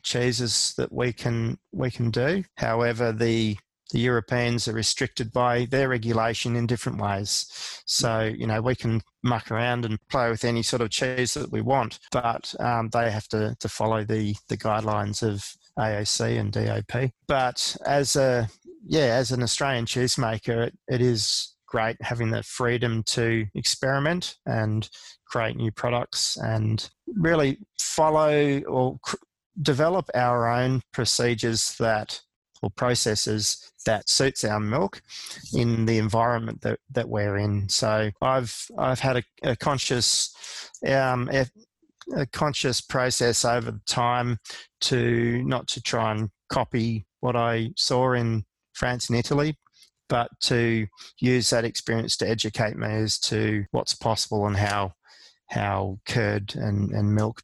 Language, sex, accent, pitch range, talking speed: English, male, Australian, 110-125 Hz, 145 wpm